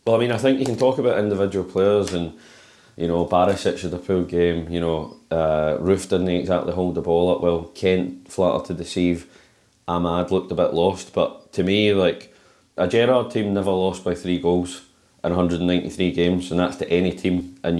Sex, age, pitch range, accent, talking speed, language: male, 20-39, 85-95 Hz, British, 215 wpm, English